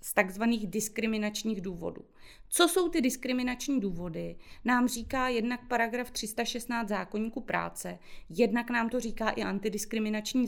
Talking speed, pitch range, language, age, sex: 125 wpm, 190-235 Hz, Czech, 30-49, female